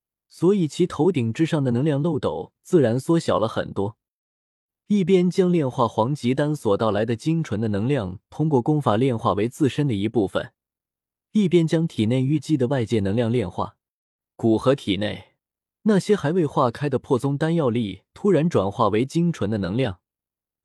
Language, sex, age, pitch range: Chinese, male, 20-39, 110-165 Hz